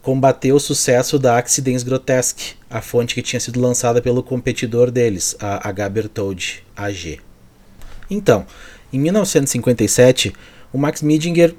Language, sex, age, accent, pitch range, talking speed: Portuguese, male, 30-49, Brazilian, 115-140 Hz, 130 wpm